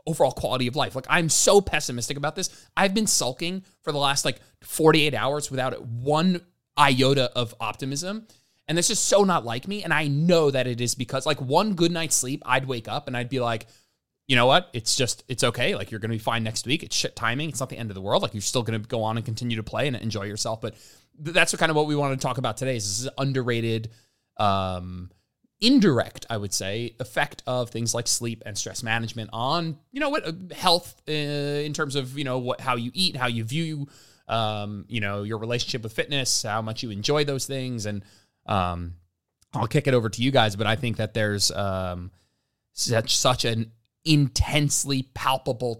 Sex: male